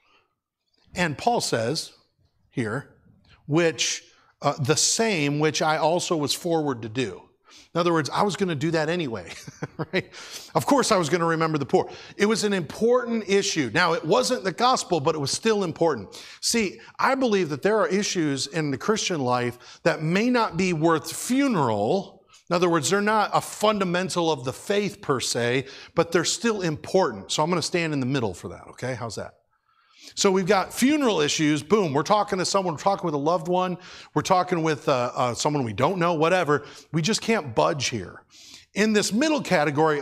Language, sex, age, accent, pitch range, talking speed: English, male, 50-69, American, 145-195 Hz, 195 wpm